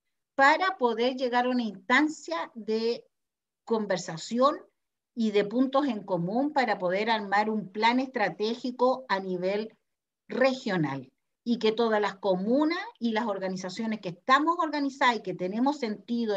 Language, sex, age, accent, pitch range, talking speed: Spanish, female, 50-69, American, 210-255 Hz, 135 wpm